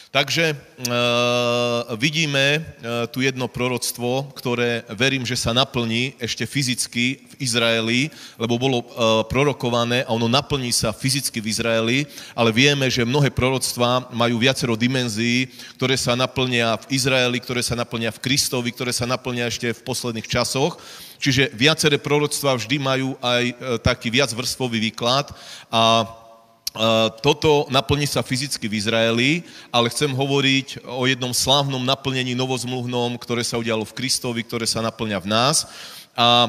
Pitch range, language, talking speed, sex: 120-135 Hz, Slovak, 145 wpm, male